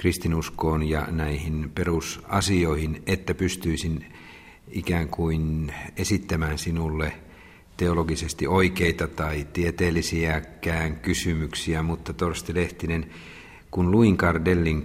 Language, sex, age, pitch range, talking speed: Finnish, male, 50-69, 80-90 Hz, 85 wpm